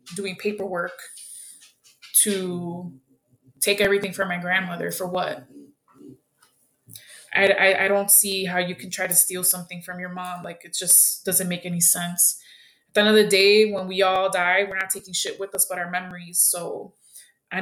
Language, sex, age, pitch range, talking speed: English, female, 20-39, 180-200 Hz, 180 wpm